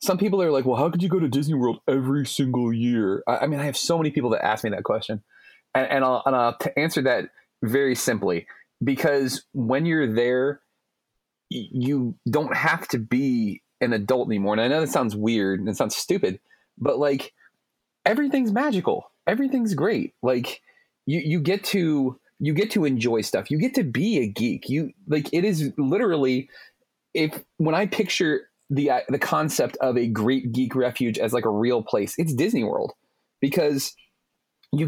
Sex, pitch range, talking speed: male, 120-155 Hz, 185 wpm